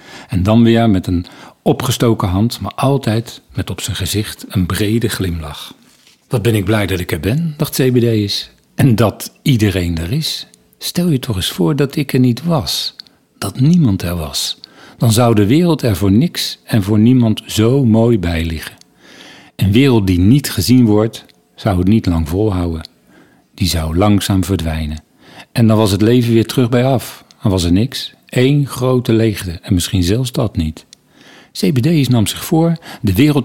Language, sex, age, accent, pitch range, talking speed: Dutch, male, 50-69, Dutch, 100-135 Hz, 180 wpm